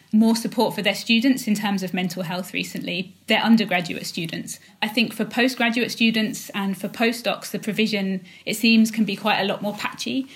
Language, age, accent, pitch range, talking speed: English, 20-39, British, 195-225 Hz, 190 wpm